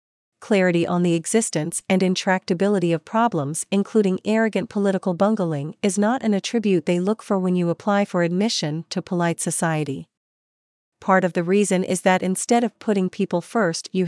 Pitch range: 170-205 Hz